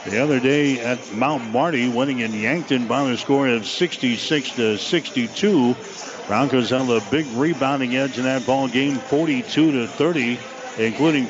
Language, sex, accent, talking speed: English, male, American, 160 wpm